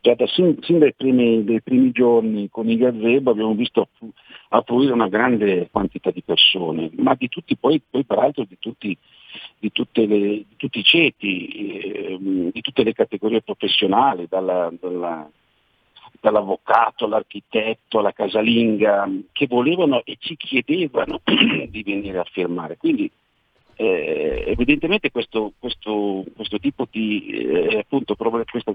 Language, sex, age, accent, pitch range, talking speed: Italian, male, 50-69, native, 95-125 Hz, 120 wpm